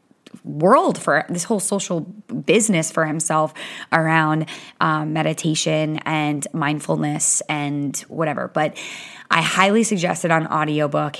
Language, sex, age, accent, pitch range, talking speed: English, female, 20-39, American, 155-185 Hz, 120 wpm